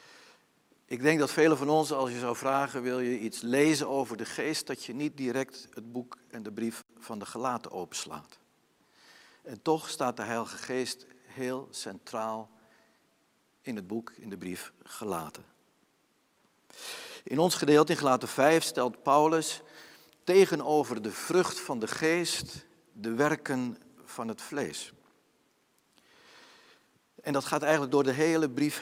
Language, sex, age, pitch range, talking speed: Dutch, male, 50-69, 115-150 Hz, 150 wpm